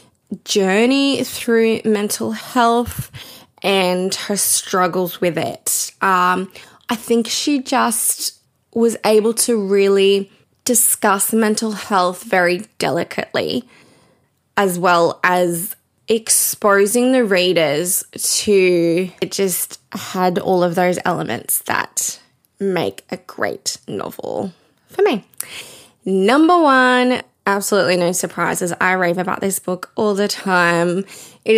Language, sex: English, female